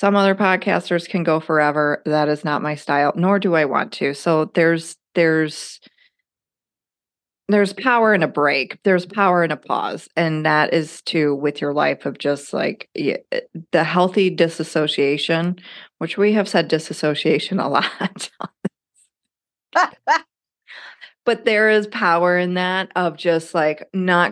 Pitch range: 150-195 Hz